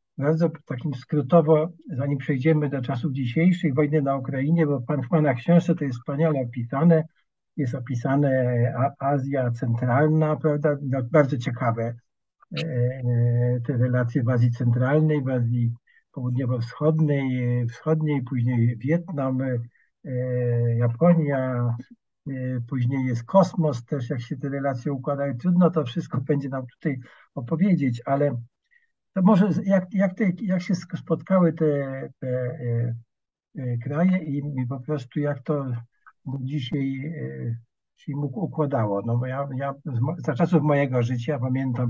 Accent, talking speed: native, 125 wpm